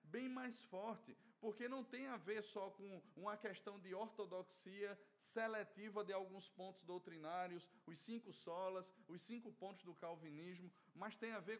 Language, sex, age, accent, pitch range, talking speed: Portuguese, male, 20-39, Brazilian, 190-220 Hz, 160 wpm